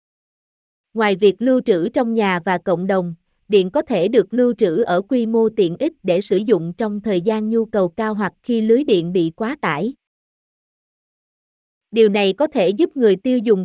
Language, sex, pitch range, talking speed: Vietnamese, female, 195-245 Hz, 195 wpm